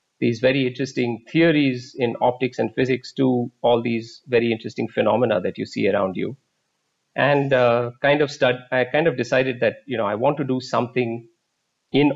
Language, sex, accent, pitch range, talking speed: English, male, Indian, 110-135 Hz, 185 wpm